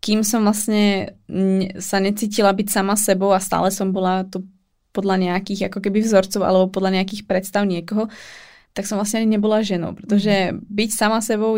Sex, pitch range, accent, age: female, 190-215 Hz, native, 20-39